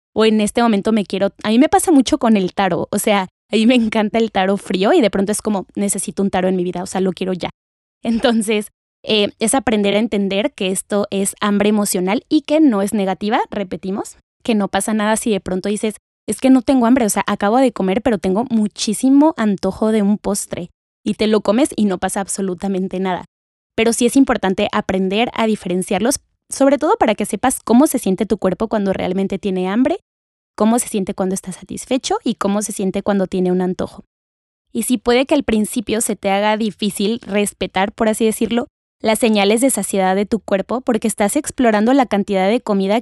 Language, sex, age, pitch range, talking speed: Spanish, female, 20-39, 195-230 Hz, 215 wpm